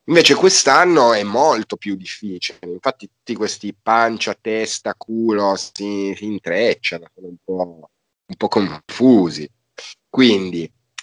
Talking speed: 115 wpm